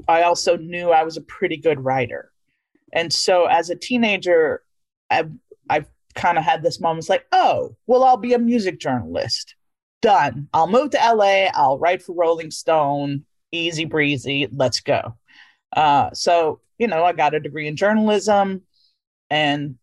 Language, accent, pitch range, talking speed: English, American, 145-210 Hz, 160 wpm